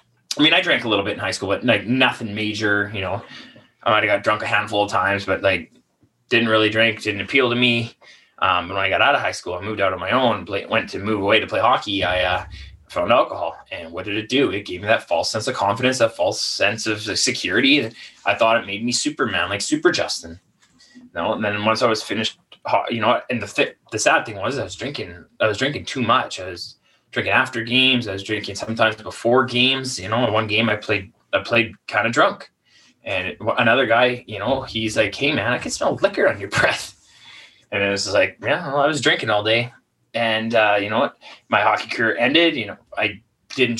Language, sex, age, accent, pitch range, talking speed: English, male, 20-39, American, 100-125 Hz, 235 wpm